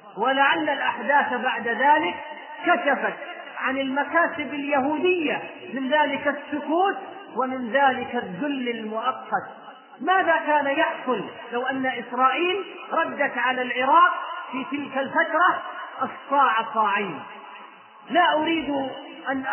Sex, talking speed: male, 100 wpm